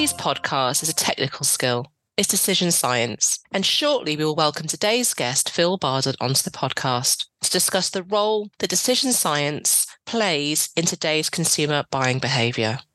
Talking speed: 160 wpm